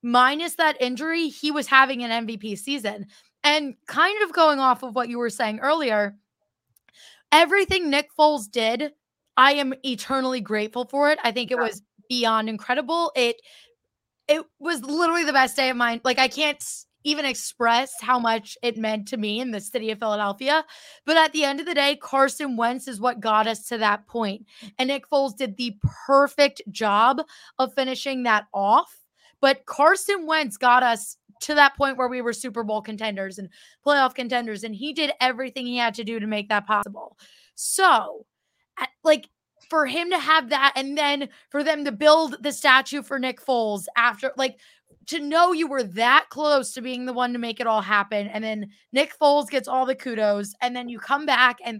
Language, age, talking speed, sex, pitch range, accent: English, 20-39, 190 wpm, female, 230-290 Hz, American